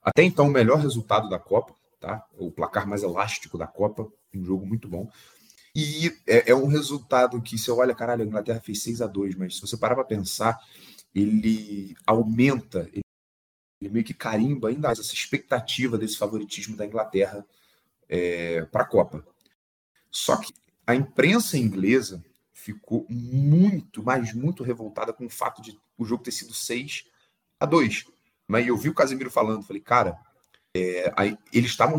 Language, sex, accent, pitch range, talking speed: Portuguese, male, Brazilian, 100-130 Hz, 160 wpm